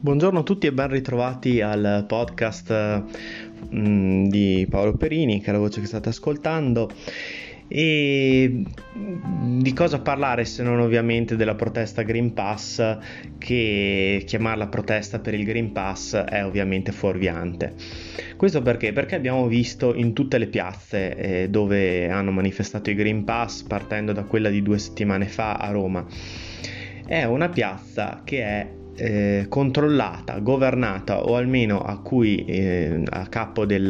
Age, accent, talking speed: 20-39, native, 140 wpm